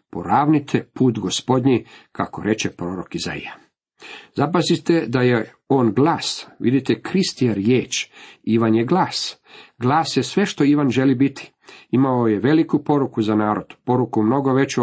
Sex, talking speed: male, 140 wpm